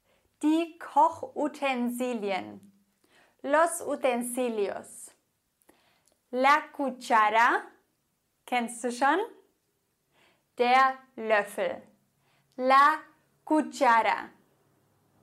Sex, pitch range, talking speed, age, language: female, 240-310 Hz, 50 wpm, 20-39, English